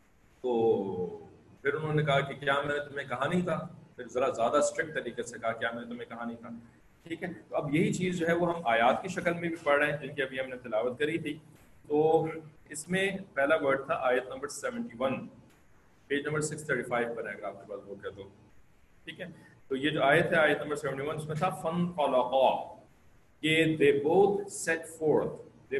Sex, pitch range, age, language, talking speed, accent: male, 120-170 Hz, 40-59, English, 90 wpm, Indian